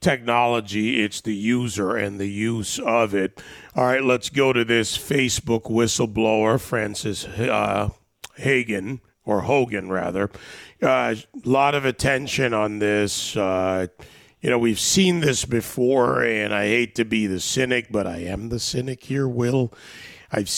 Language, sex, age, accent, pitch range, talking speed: English, male, 40-59, American, 105-125 Hz, 155 wpm